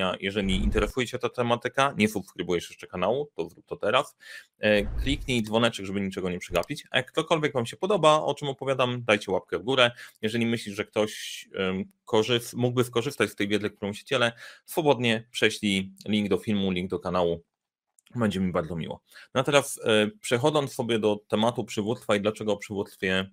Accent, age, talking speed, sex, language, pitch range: native, 30-49, 175 wpm, male, Polish, 105-125 Hz